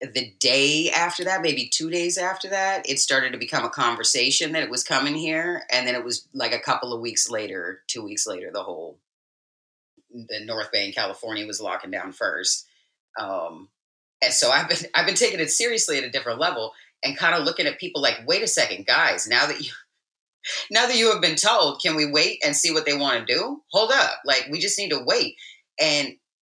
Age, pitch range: 30-49, 125-200 Hz